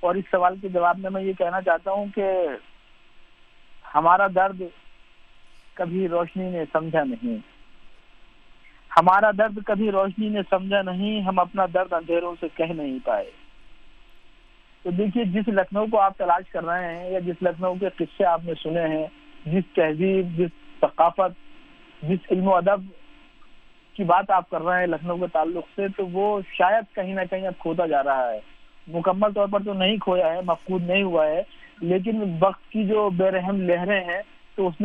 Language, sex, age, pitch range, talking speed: Urdu, male, 50-69, 175-200 Hz, 175 wpm